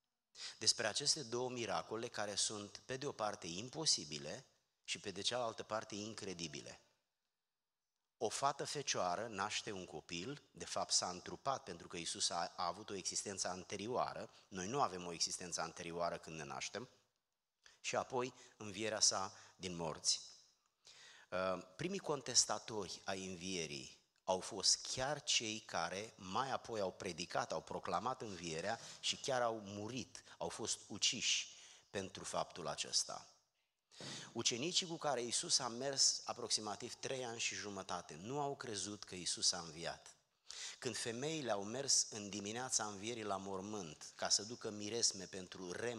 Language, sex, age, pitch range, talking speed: Romanian, male, 30-49, 95-125 Hz, 140 wpm